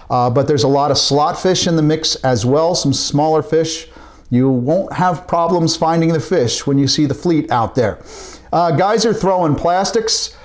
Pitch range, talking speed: 135-165 Hz, 200 wpm